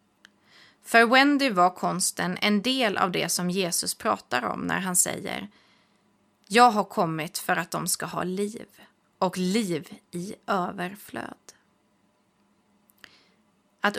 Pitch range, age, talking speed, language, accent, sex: 185-230 Hz, 30-49, 125 wpm, Swedish, native, female